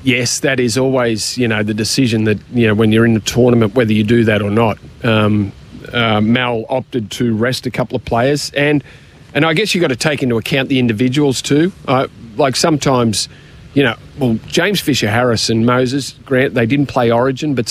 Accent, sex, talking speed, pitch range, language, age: Australian, male, 210 wpm, 115-135 Hz, English, 40-59